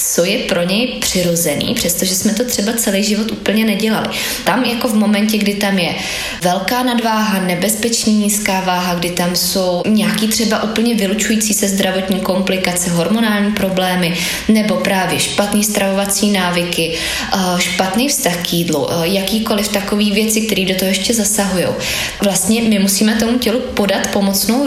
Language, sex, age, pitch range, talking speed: Slovak, female, 20-39, 190-220 Hz, 150 wpm